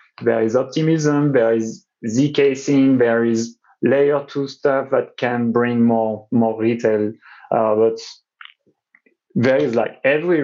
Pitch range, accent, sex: 115-140 Hz, French, male